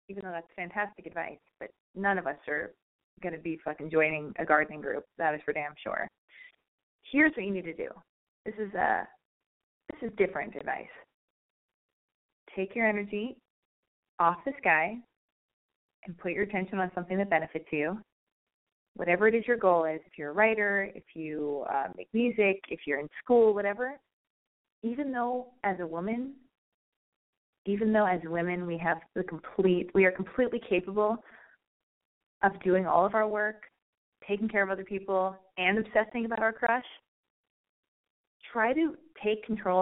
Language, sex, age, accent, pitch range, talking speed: English, female, 20-39, American, 170-220 Hz, 165 wpm